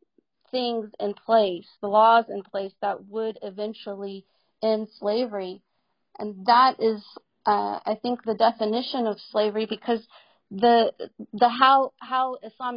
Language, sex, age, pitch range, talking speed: Punjabi, female, 40-59, 215-255 Hz, 130 wpm